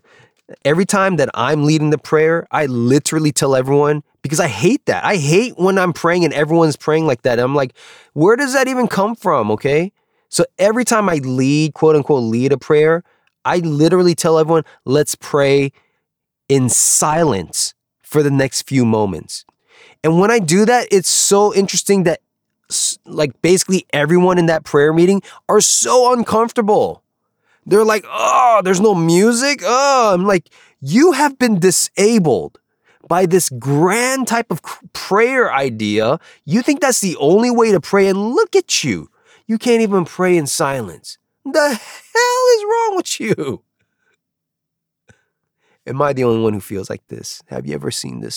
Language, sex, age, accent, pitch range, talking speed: English, male, 20-39, American, 145-215 Hz, 165 wpm